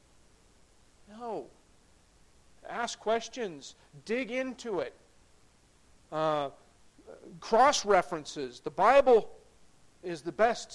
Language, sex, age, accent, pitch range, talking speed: English, male, 40-59, American, 170-230 Hz, 75 wpm